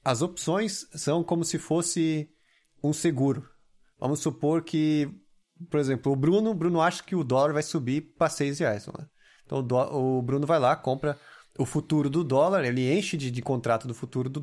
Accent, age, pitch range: Brazilian, 20-39, 130-165 Hz